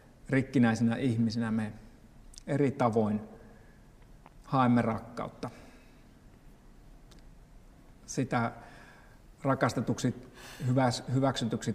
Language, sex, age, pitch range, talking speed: Finnish, male, 60-79, 115-125 Hz, 50 wpm